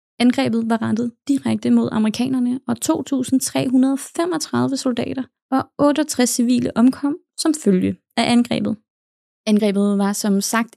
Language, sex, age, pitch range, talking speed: English, female, 20-39, 215-260 Hz, 115 wpm